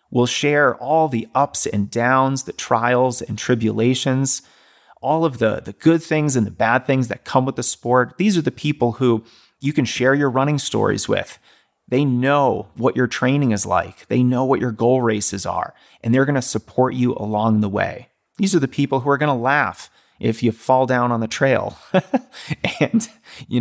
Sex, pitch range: male, 115-140 Hz